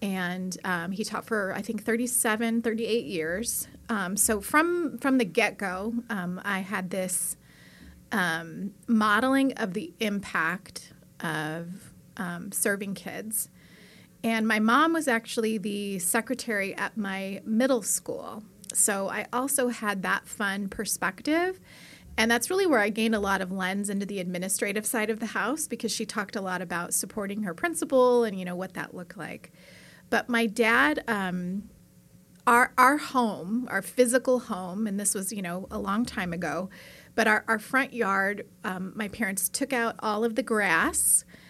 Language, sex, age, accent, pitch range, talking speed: English, female, 30-49, American, 190-235 Hz, 165 wpm